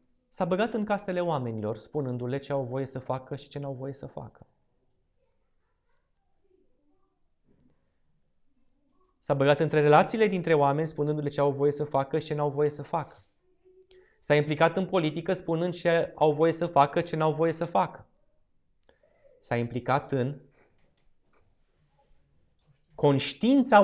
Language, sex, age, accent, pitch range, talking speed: Romanian, male, 20-39, native, 120-200 Hz, 135 wpm